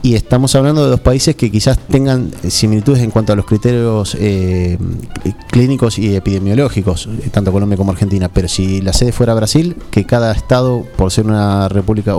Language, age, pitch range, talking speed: English, 30-49, 100-125 Hz, 175 wpm